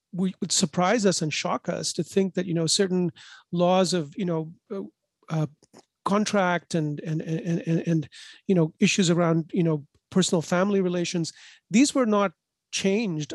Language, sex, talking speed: English, male, 170 wpm